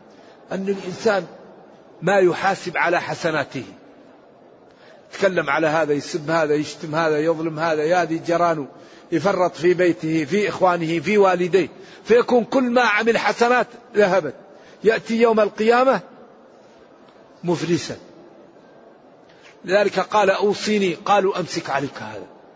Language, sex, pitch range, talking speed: Arabic, male, 165-205 Hz, 110 wpm